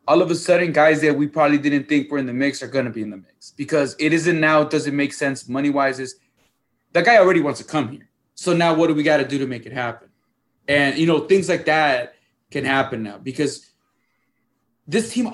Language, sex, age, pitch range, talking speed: English, male, 20-39, 135-175 Hz, 245 wpm